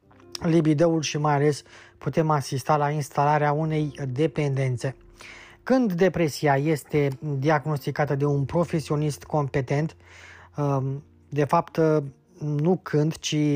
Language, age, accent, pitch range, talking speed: Romanian, 20-39, native, 135-160 Hz, 100 wpm